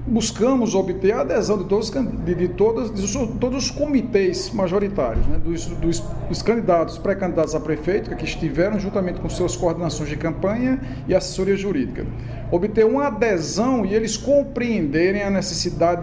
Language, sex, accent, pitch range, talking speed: Portuguese, male, Brazilian, 165-215 Hz, 155 wpm